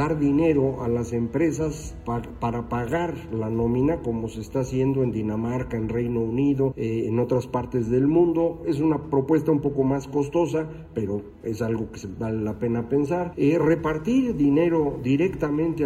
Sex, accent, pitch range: male, Mexican, 120-155 Hz